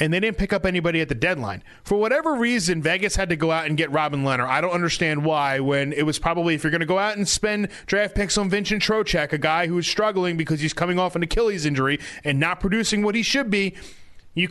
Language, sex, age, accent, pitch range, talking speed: English, male, 30-49, American, 150-205 Hz, 255 wpm